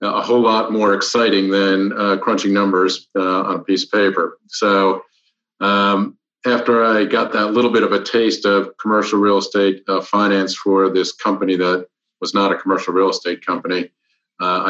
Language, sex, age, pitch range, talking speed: English, male, 40-59, 95-105 Hz, 180 wpm